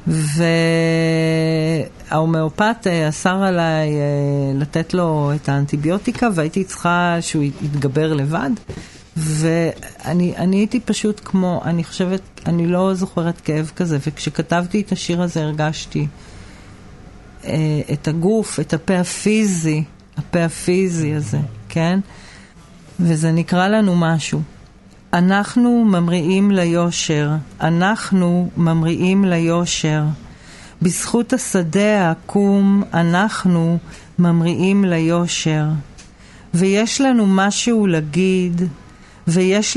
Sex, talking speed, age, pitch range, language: female, 90 wpm, 40-59, 155-190 Hz, Hebrew